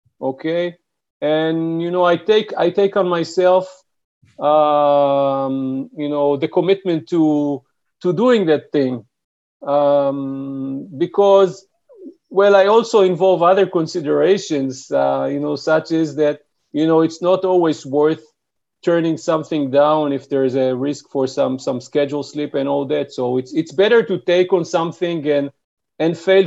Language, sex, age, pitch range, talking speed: French, male, 40-59, 140-175 Hz, 150 wpm